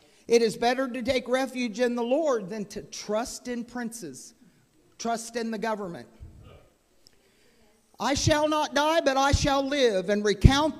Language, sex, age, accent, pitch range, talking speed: English, male, 50-69, American, 230-310 Hz, 155 wpm